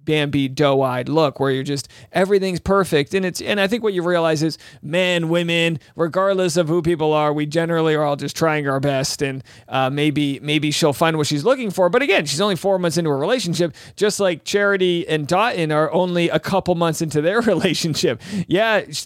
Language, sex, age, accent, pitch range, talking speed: English, male, 40-59, American, 150-200 Hz, 205 wpm